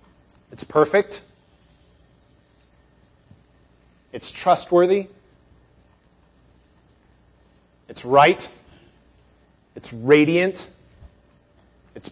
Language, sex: English, male